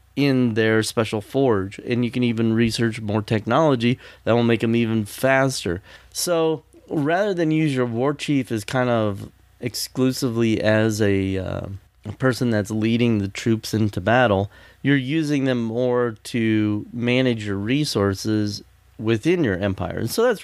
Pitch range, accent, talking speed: 105-130 Hz, American, 155 wpm